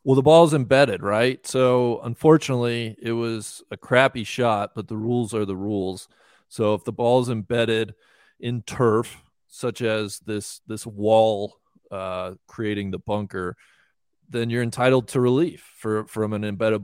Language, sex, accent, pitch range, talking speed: English, male, American, 110-130 Hz, 160 wpm